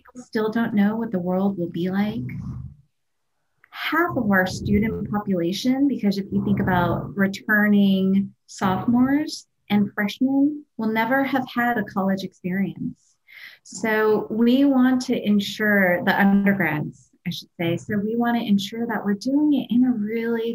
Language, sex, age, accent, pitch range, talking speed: English, female, 30-49, American, 185-215 Hz, 150 wpm